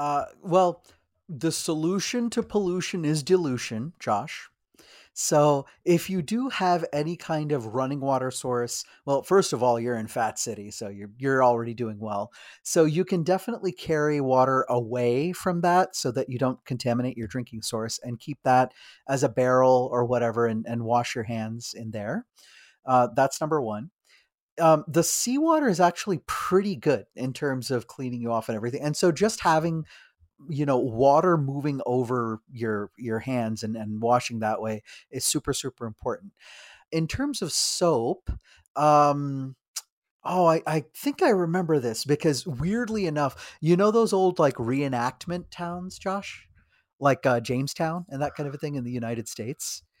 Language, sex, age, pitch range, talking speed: English, male, 30-49, 120-175 Hz, 170 wpm